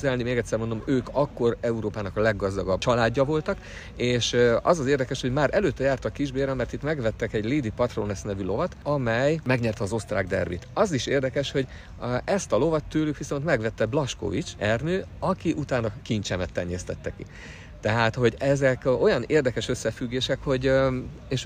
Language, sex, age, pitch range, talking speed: Hungarian, male, 50-69, 100-130 Hz, 160 wpm